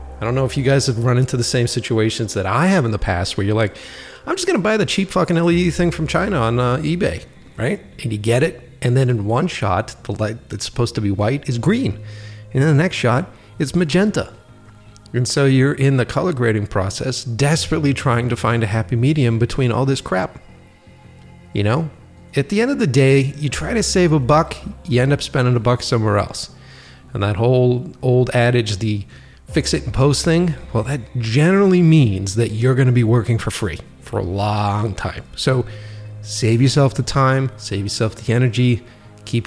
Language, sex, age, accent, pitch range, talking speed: English, male, 40-59, American, 105-140 Hz, 215 wpm